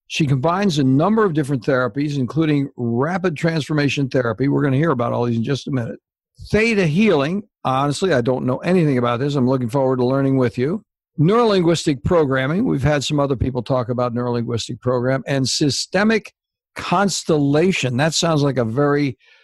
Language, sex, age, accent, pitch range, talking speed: English, male, 60-79, American, 130-165 Hz, 175 wpm